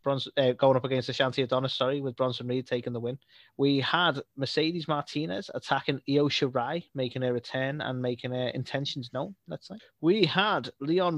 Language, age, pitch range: English, 20-39, 120-145 Hz